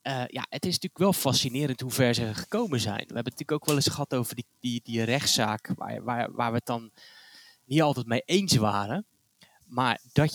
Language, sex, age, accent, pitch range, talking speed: Dutch, male, 20-39, Dutch, 125-165 Hz, 220 wpm